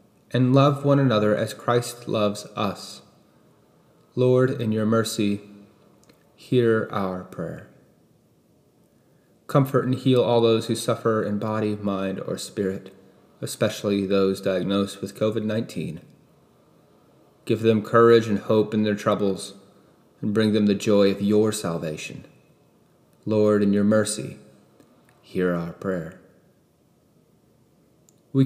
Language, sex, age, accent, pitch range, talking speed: English, male, 30-49, American, 100-120 Hz, 120 wpm